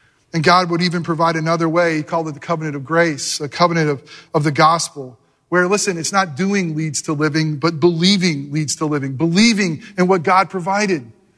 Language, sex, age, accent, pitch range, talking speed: English, male, 40-59, American, 180-265 Hz, 200 wpm